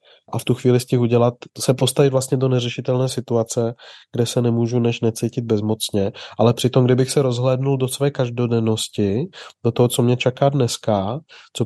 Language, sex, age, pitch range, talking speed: Czech, male, 30-49, 115-140 Hz, 175 wpm